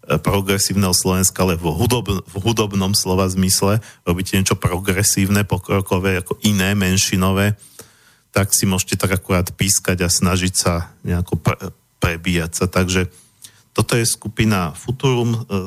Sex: male